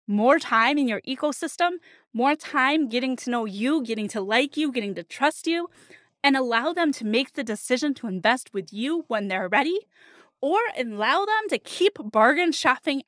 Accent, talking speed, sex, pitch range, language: American, 185 wpm, female, 225-300 Hz, English